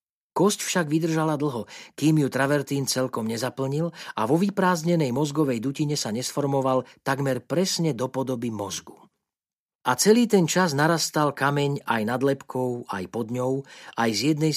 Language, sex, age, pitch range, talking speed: Slovak, male, 40-59, 120-155 Hz, 150 wpm